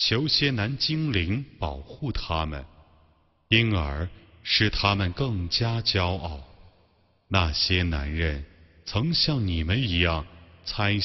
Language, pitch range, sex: Chinese, 85-110 Hz, male